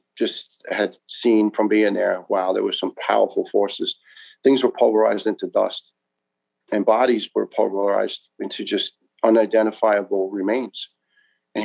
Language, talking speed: English, 135 wpm